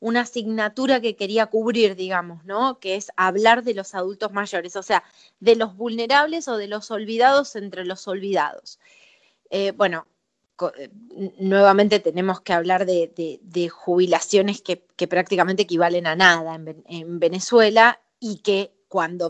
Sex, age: female, 20-39